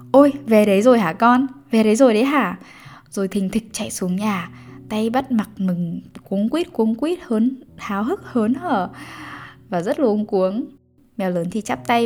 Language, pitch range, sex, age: Vietnamese, 185-250 Hz, female, 10-29